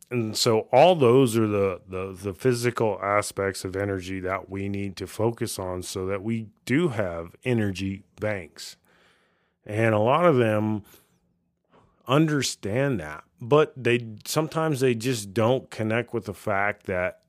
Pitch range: 95-120 Hz